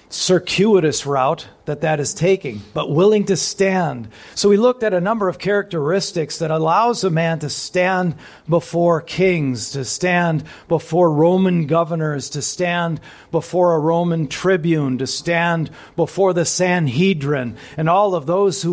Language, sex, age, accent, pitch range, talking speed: English, male, 50-69, American, 155-190 Hz, 150 wpm